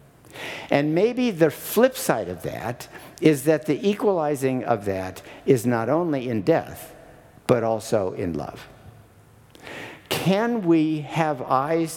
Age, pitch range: 50-69, 120-155 Hz